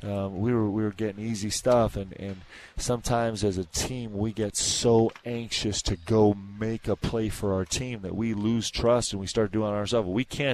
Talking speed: 220 wpm